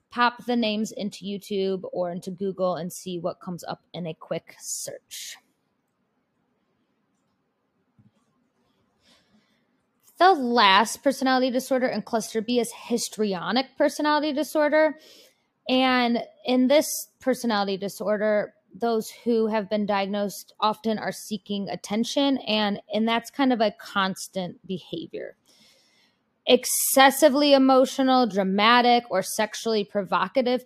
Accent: American